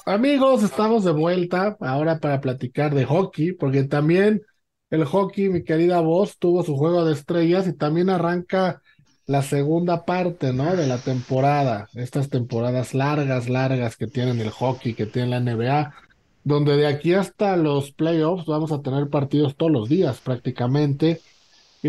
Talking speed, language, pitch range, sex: 160 wpm, Spanish, 135-185 Hz, male